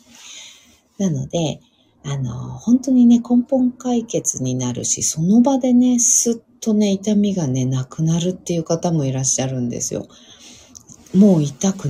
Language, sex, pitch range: Japanese, female, 130-195 Hz